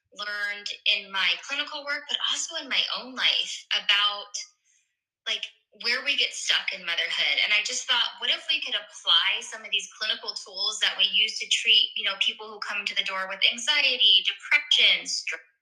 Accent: American